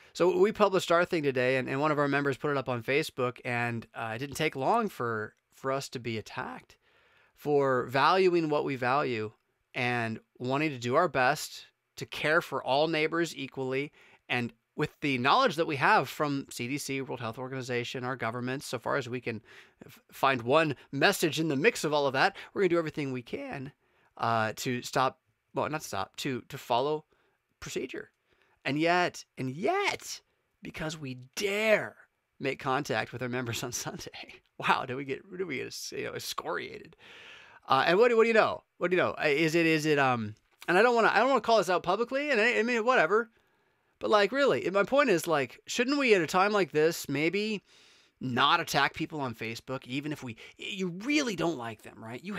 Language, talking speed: English, 205 wpm